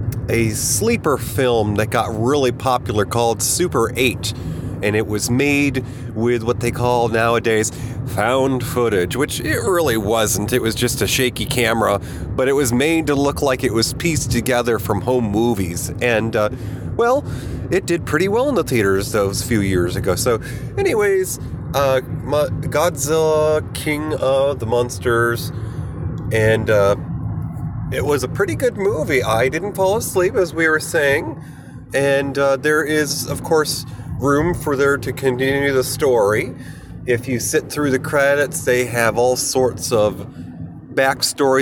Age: 30-49